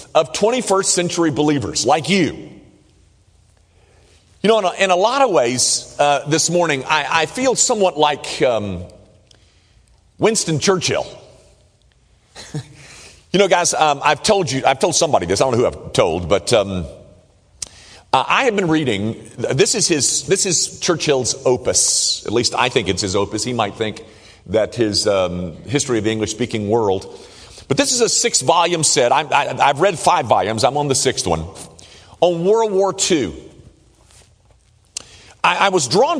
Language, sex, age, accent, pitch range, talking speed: English, male, 50-69, American, 105-170 Hz, 160 wpm